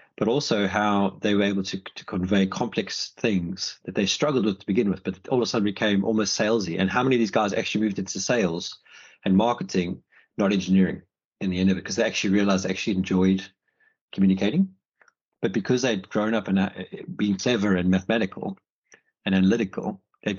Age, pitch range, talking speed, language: 30-49, 95-115 Hz, 195 wpm, English